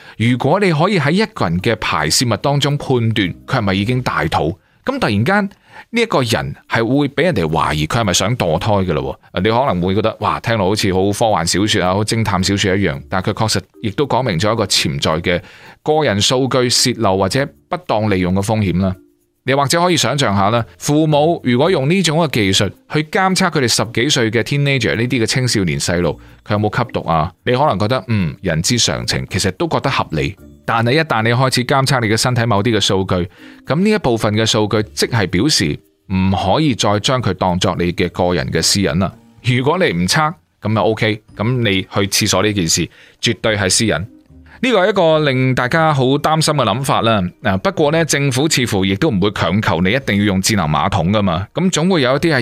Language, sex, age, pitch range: Chinese, male, 30-49, 95-135 Hz